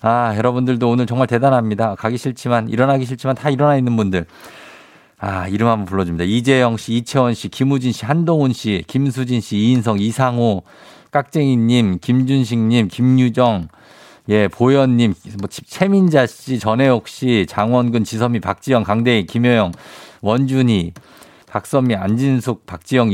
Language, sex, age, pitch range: Korean, male, 50-69, 100-130 Hz